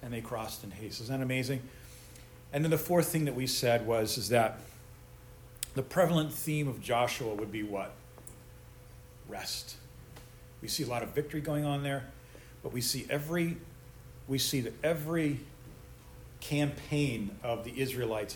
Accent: American